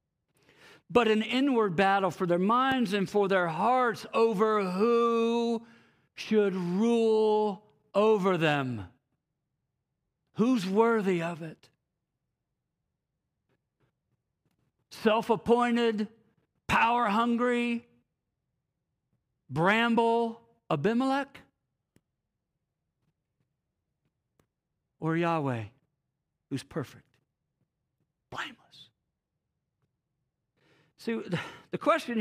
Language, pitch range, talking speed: English, 145-225 Hz, 65 wpm